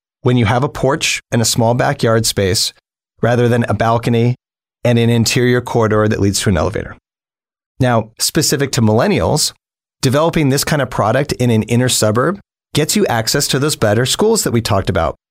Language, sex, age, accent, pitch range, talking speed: English, male, 40-59, American, 110-140 Hz, 185 wpm